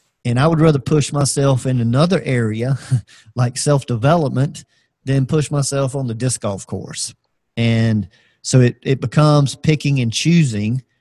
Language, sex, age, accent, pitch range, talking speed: English, male, 40-59, American, 115-135 Hz, 145 wpm